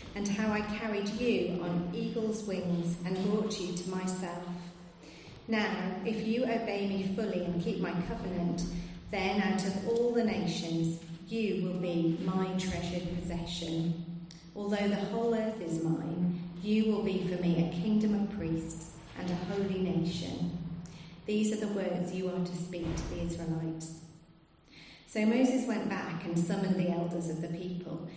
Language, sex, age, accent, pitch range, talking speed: English, female, 40-59, British, 170-205 Hz, 160 wpm